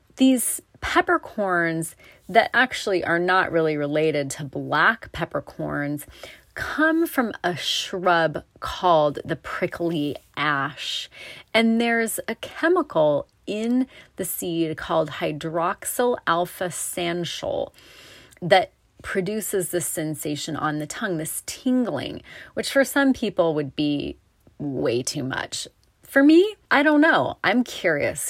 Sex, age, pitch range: female, 30-49, 145-210 Hz